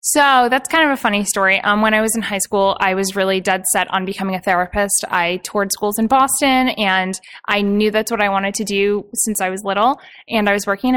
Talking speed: 250 wpm